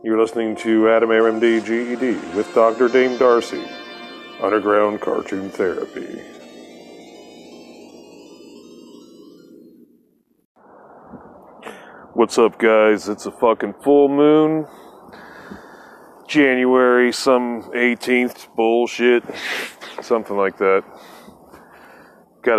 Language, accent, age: English, American, 30-49